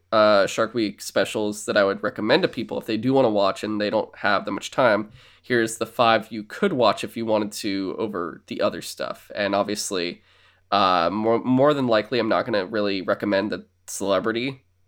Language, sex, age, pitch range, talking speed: English, male, 20-39, 95-115 Hz, 210 wpm